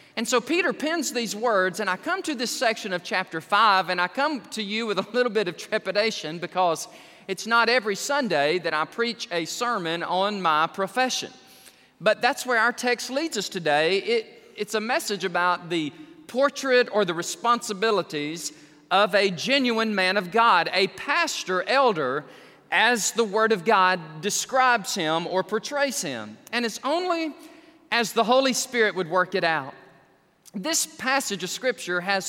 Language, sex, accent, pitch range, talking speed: English, male, American, 175-240 Hz, 170 wpm